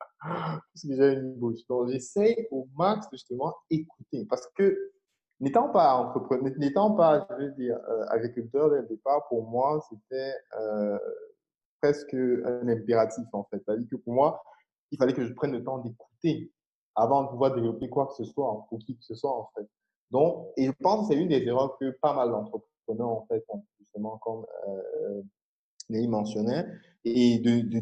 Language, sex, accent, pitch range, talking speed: French, male, French, 115-150 Hz, 175 wpm